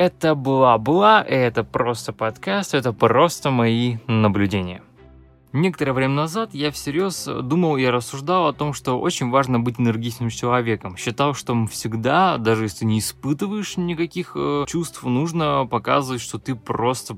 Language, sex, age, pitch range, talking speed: Russian, male, 20-39, 115-165 Hz, 135 wpm